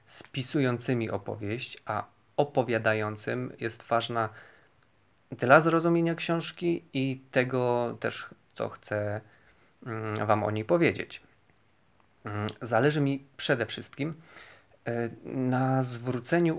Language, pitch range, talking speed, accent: Polish, 110-135 Hz, 85 wpm, native